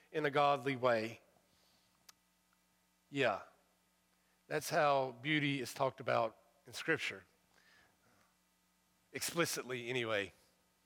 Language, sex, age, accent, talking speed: English, male, 40-59, American, 85 wpm